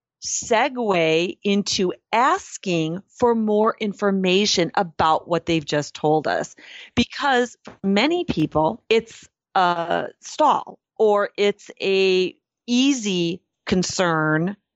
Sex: female